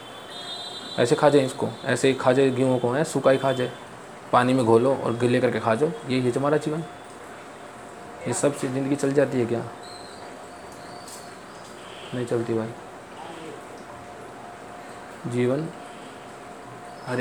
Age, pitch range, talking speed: 20-39, 115-135 Hz, 135 wpm